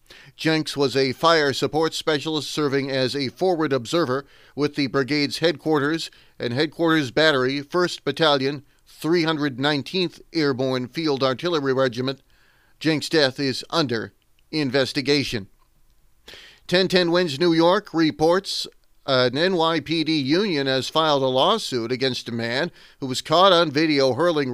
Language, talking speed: English, 125 wpm